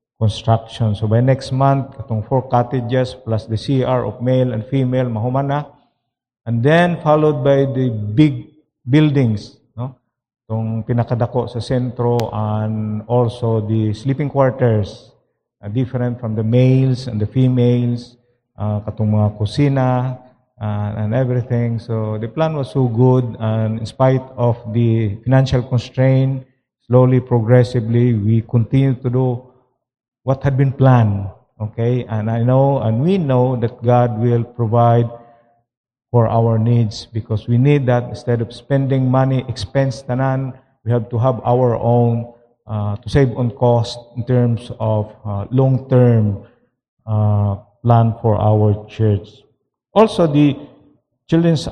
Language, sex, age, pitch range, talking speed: English, male, 50-69, 115-130 Hz, 135 wpm